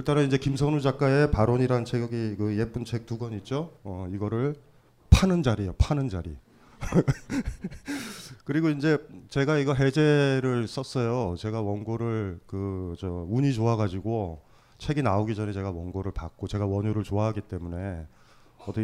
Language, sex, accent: Korean, male, native